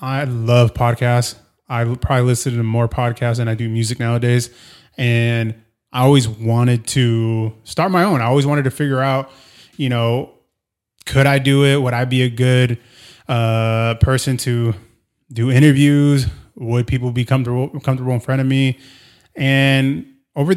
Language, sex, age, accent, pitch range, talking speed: English, male, 20-39, American, 115-135 Hz, 160 wpm